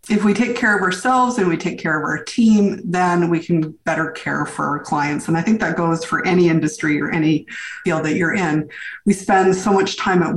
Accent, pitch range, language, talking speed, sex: American, 165-205 Hz, English, 235 wpm, female